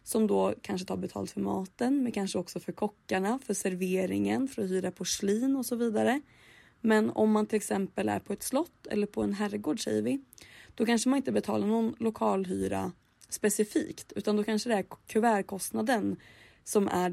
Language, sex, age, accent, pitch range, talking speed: Swedish, female, 20-39, native, 160-230 Hz, 180 wpm